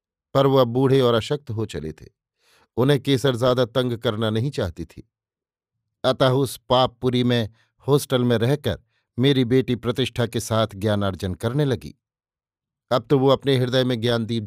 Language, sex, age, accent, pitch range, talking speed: Hindi, male, 50-69, native, 110-135 Hz, 160 wpm